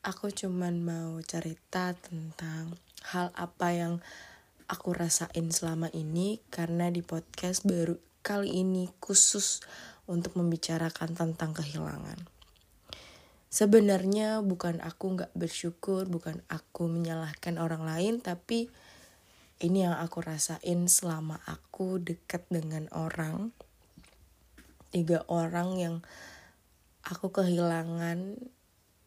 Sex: female